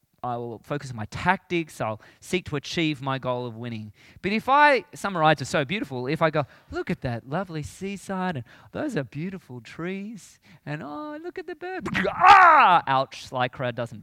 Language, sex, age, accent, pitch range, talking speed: English, male, 20-39, Australian, 125-190 Hz, 195 wpm